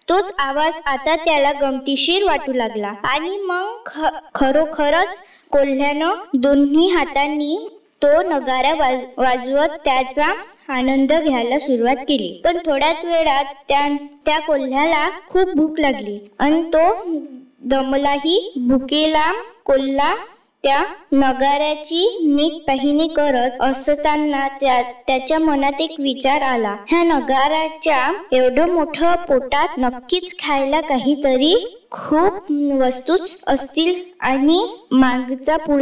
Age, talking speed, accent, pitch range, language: 20-39, 55 wpm, native, 270-325 Hz, Marathi